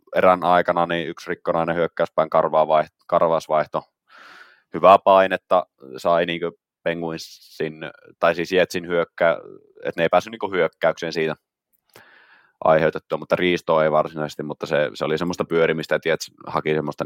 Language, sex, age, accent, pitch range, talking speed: Finnish, male, 20-39, native, 80-90 Hz, 130 wpm